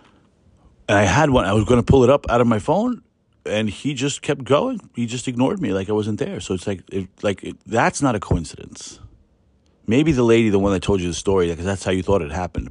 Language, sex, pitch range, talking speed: English, male, 90-110 Hz, 250 wpm